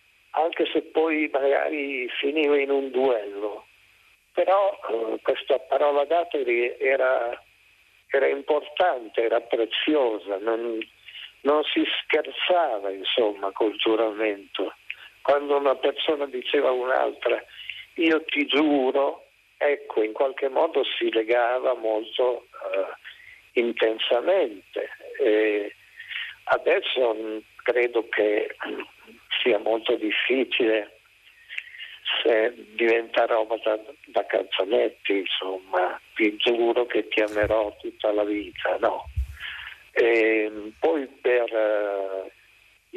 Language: Italian